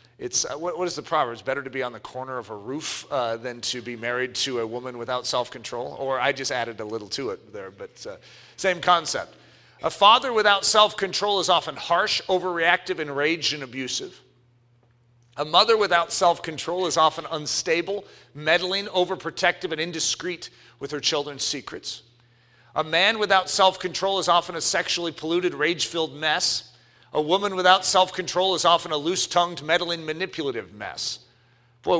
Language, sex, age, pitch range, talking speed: English, male, 40-59, 135-200 Hz, 165 wpm